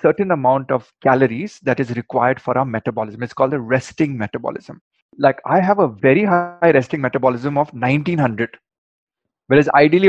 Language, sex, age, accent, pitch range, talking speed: Hindi, male, 30-49, native, 130-170 Hz, 160 wpm